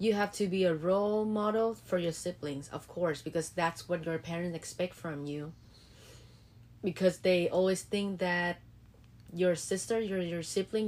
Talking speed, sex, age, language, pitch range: 165 wpm, female, 30-49, English, 155-200 Hz